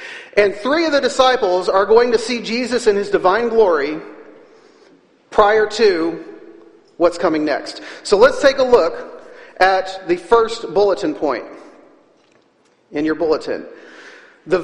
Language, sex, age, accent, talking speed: English, male, 40-59, American, 135 wpm